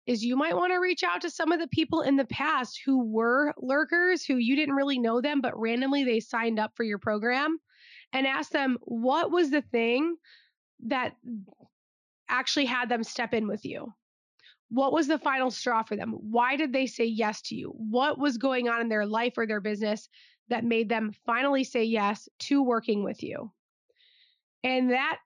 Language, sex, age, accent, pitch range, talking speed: English, female, 20-39, American, 230-275 Hz, 195 wpm